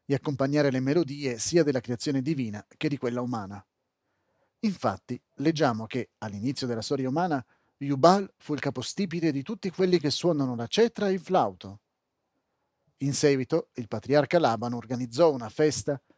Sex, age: male, 40-59